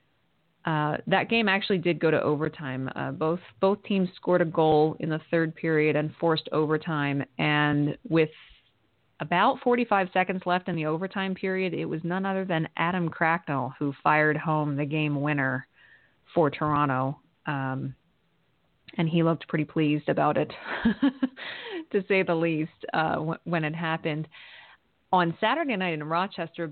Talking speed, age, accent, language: 155 wpm, 30-49, American, English